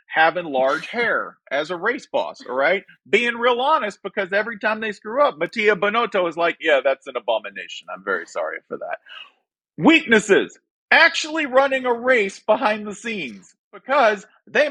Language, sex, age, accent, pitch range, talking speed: English, male, 40-59, American, 145-235 Hz, 165 wpm